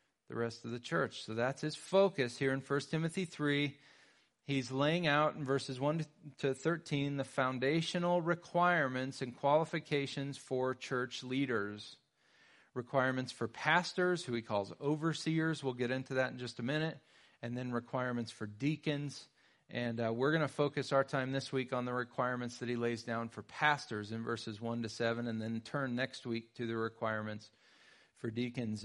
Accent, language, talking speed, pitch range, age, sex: American, English, 175 wpm, 120-155 Hz, 40-59, male